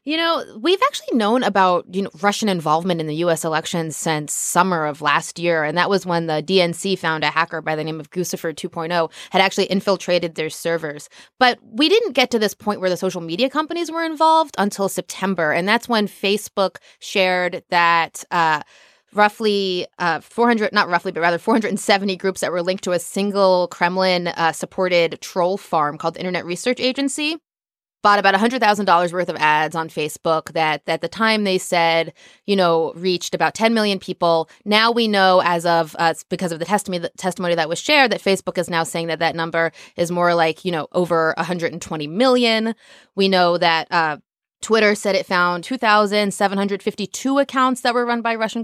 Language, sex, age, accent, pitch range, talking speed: English, female, 20-39, American, 170-215 Hz, 185 wpm